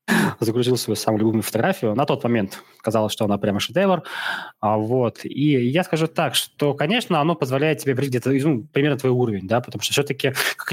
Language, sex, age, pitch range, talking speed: Russian, male, 20-39, 115-155 Hz, 185 wpm